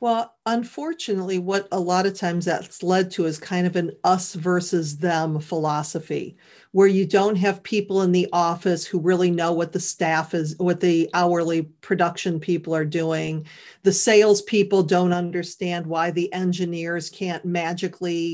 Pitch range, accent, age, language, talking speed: 170-195 Hz, American, 40-59, English, 160 wpm